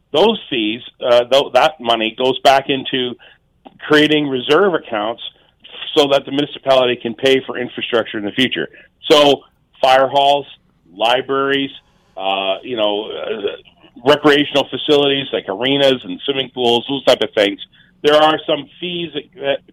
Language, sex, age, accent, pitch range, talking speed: English, male, 40-59, American, 120-145 Hz, 150 wpm